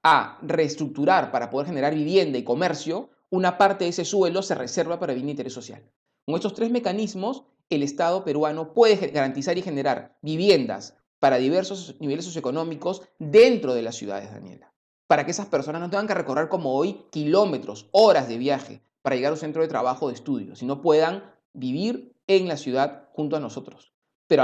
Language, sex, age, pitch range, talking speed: Spanish, male, 30-49, 140-195 Hz, 185 wpm